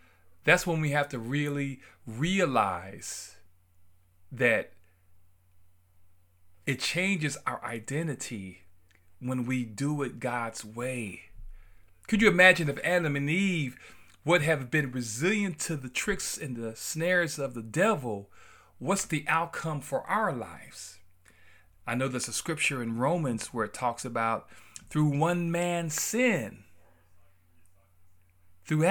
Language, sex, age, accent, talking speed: English, male, 40-59, American, 125 wpm